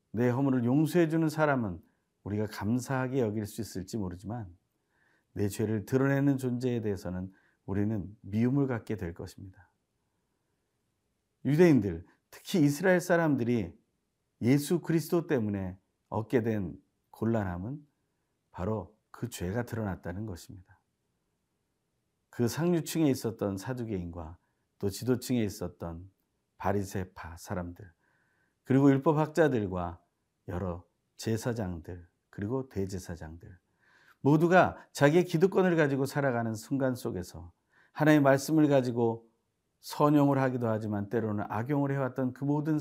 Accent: native